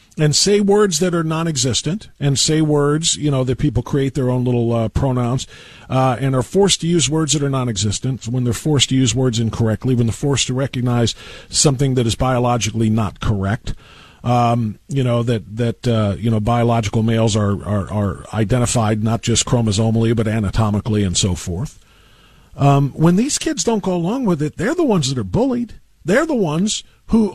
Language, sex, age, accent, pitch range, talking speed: English, male, 50-69, American, 120-200 Hz, 195 wpm